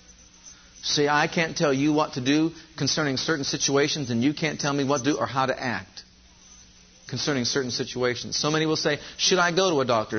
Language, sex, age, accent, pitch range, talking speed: English, male, 40-59, American, 105-150 Hz, 210 wpm